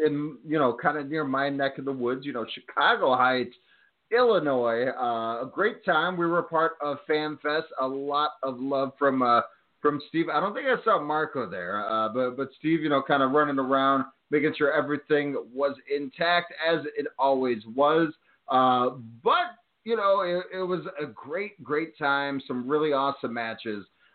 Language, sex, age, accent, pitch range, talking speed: English, male, 30-49, American, 125-160 Hz, 185 wpm